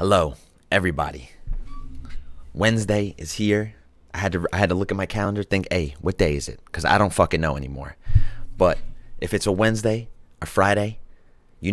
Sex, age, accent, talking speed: male, 30-49, American, 180 wpm